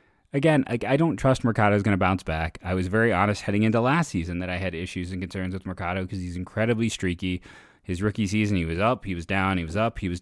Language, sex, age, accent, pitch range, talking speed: English, male, 20-39, American, 90-110 Hz, 260 wpm